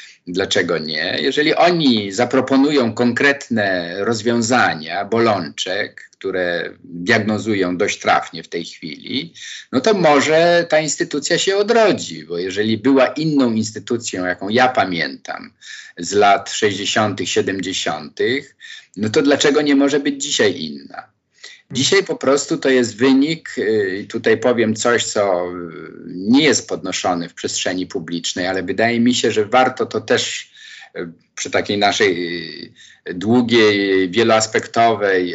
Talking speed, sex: 120 wpm, male